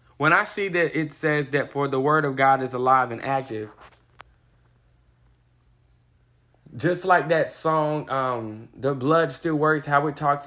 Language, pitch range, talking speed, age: English, 120-160 Hz, 160 wpm, 20-39